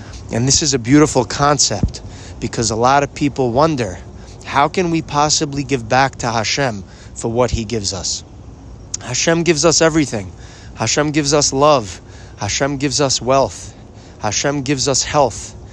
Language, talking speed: English, 155 wpm